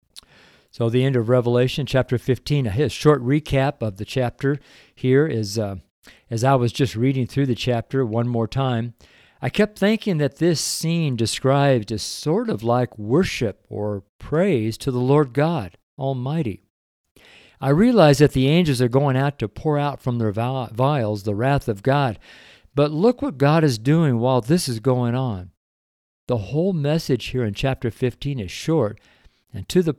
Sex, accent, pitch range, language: male, American, 110-140 Hz, English